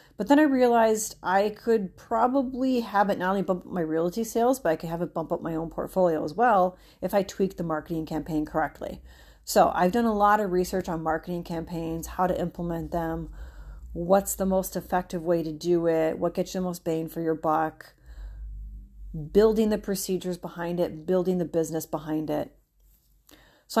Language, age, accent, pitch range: English, 30-49, American, 165-205 Hz